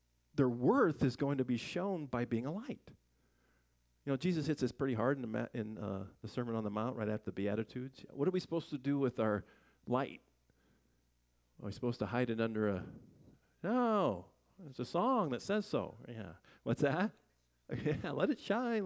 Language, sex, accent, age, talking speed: English, male, American, 40-59, 200 wpm